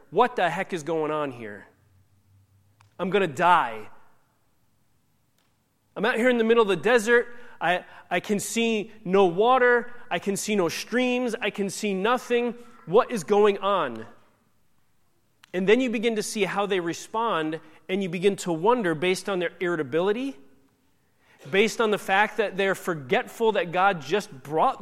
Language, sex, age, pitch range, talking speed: English, male, 30-49, 145-210 Hz, 165 wpm